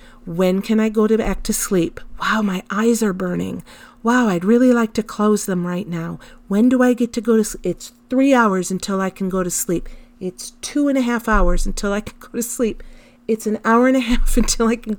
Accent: American